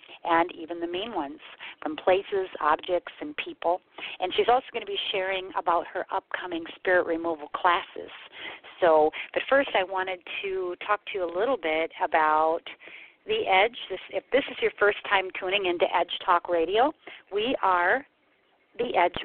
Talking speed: 165 wpm